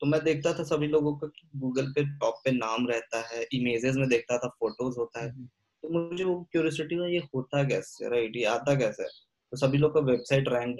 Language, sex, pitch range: Hindi, male, 120-145 Hz